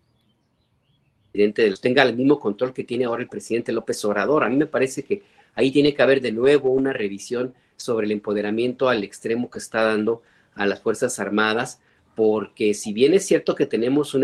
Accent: Mexican